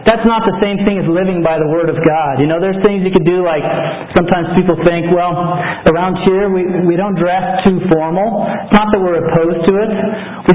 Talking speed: 230 wpm